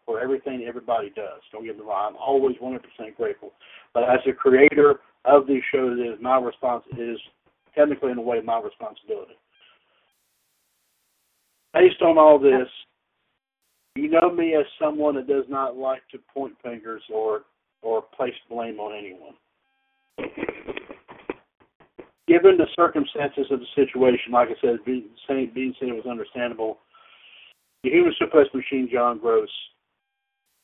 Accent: American